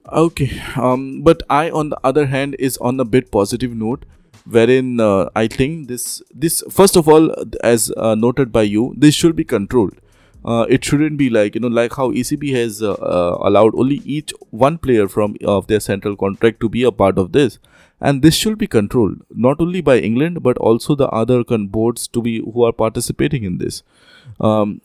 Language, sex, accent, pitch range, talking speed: English, male, Indian, 115-140 Hz, 205 wpm